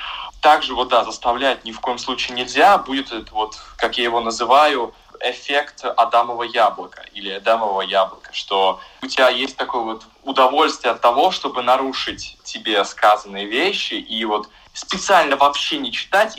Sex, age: male, 20-39